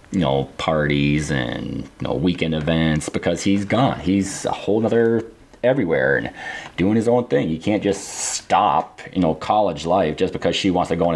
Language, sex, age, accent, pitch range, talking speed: English, male, 30-49, American, 85-100 Hz, 195 wpm